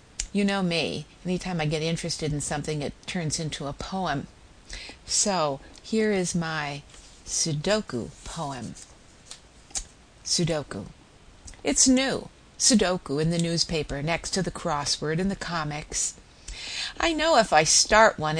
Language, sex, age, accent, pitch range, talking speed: English, female, 50-69, American, 155-200 Hz, 135 wpm